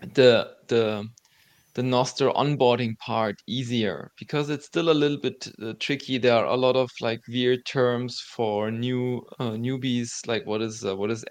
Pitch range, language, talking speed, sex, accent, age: 115-130 Hz, English, 175 wpm, male, German, 20-39